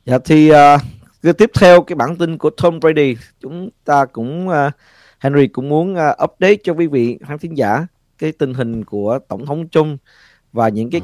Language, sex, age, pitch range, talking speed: Vietnamese, male, 20-39, 120-155 Hz, 200 wpm